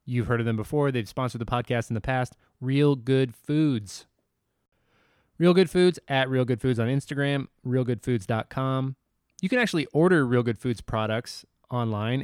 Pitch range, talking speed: 115-145 Hz, 165 wpm